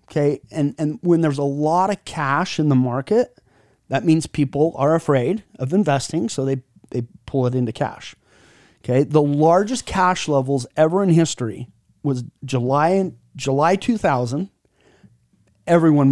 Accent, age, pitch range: American, 30-49, 130-165 Hz